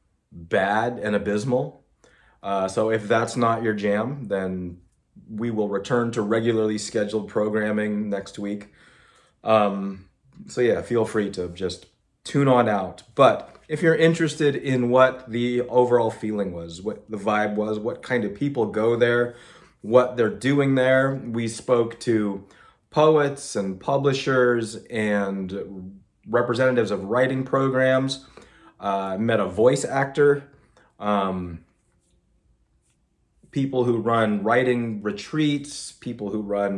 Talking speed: 130 wpm